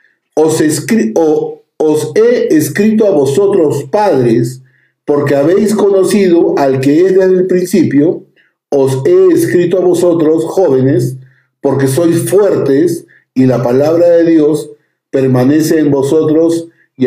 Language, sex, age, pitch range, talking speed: Spanish, male, 50-69, 125-160 Hz, 125 wpm